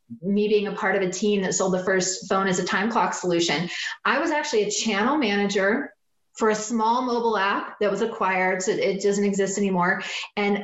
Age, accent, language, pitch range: 30-49, American, English, 190-230 Hz